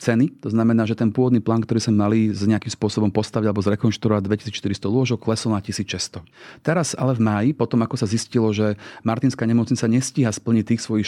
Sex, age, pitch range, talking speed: male, 30-49, 105-125 Hz, 195 wpm